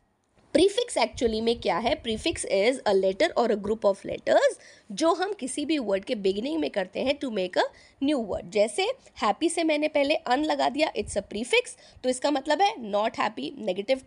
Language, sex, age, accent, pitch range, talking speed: English, female, 20-39, Indian, 230-330 Hz, 170 wpm